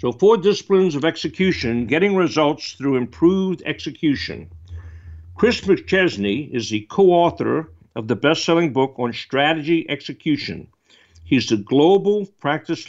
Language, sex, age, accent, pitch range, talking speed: English, male, 60-79, American, 115-170 Hz, 120 wpm